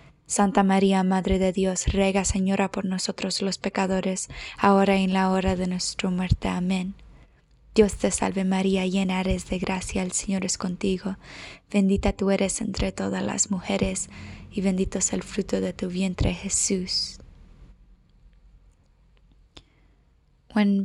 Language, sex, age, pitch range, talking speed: English, female, 20-39, 135-200 Hz, 140 wpm